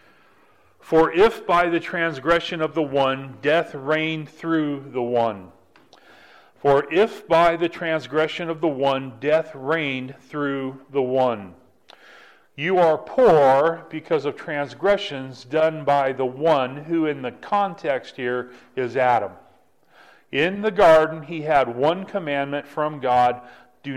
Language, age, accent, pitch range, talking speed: English, 40-59, American, 135-170 Hz, 135 wpm